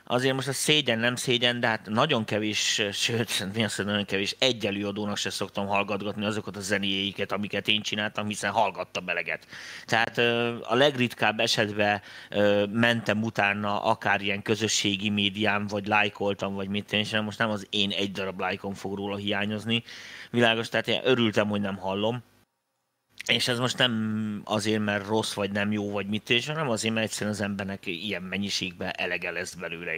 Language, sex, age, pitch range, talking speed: Hungarian, male, 30-49, 100-125 Hz, 170 wpm